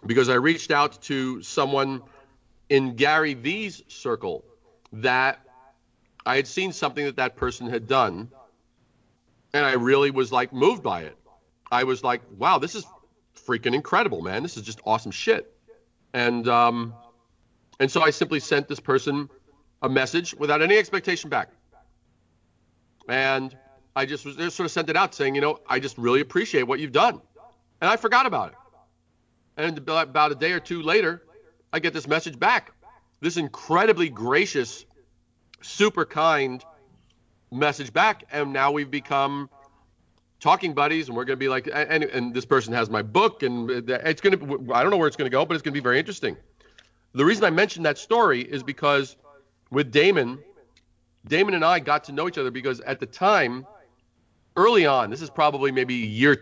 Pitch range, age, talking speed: 125-160 Hz, 40-59, 180 wpm